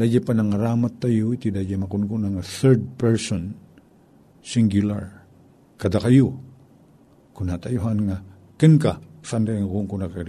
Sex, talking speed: male, 130 wpm